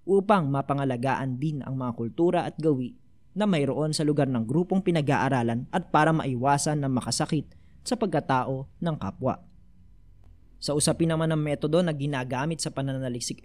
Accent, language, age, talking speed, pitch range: native, Filipino, 20-39, 145 wpm, 130-170 Hz